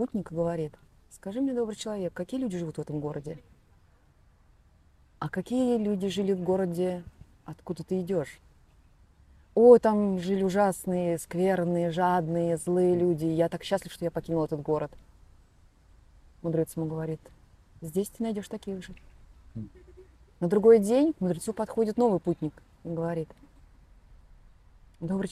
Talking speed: 130 wpm